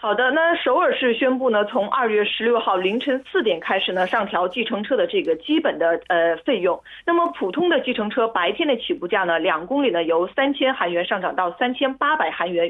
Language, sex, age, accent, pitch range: Korean, female, 30-49, Chinese, 195-320 Hz